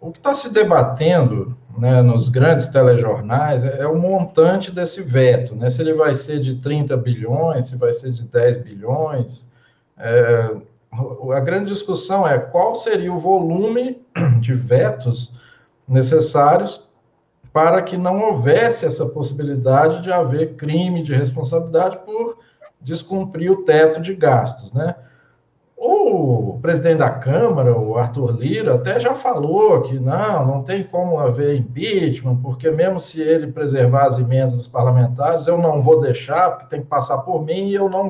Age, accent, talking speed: 50-69, Brazilian, 150 wpm